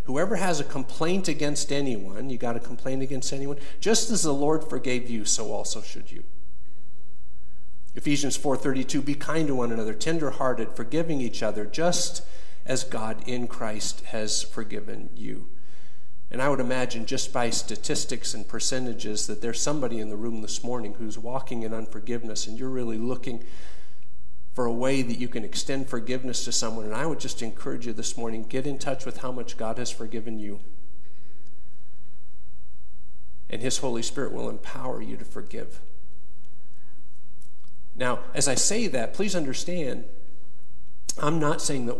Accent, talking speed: American, 165 wpm